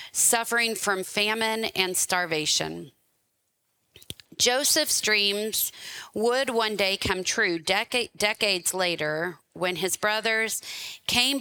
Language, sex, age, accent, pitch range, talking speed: English, female, 30-49, American, 180-220 Hz, 95 wpm